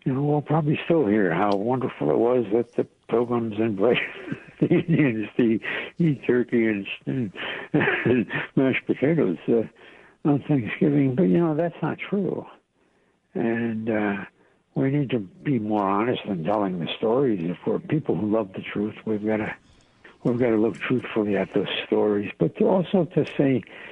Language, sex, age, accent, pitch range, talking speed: English, male, 60-79, American, 110-155 Hz, 170 wpm